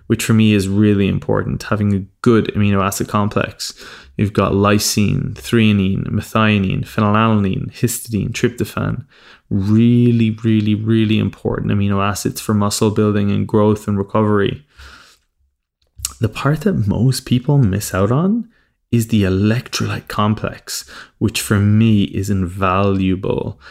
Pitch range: 100-115 Hz